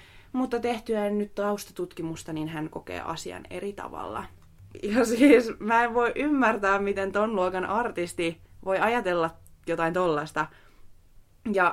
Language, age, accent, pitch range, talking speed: Finnish, 20-39, native, 165-205 Hz, 130 wpm